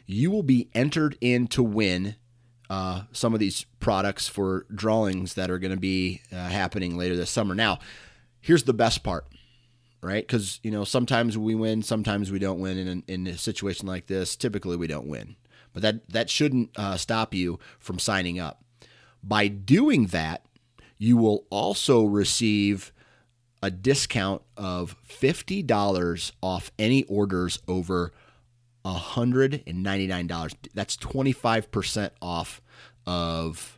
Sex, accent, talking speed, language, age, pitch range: male, American, 145 wpm, English, 30-49, 90-115 Hz